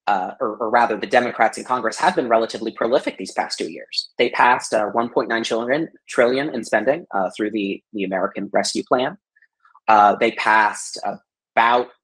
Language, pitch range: English, 110-155 Hz